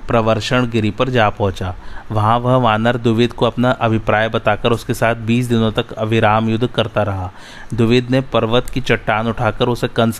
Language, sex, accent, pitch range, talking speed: Hindi, male, native, 110-125 Hz, 170 wpm